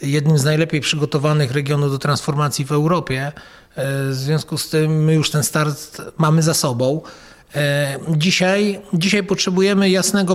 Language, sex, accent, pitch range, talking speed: Polish, male, native, 140-170 Hz, 140 wpm